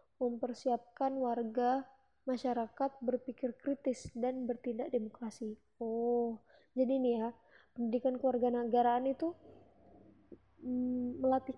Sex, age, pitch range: female, 20-39, 225-255 Hz